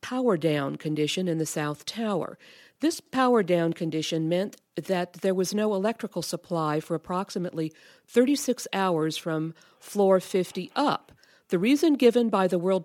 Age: 50-69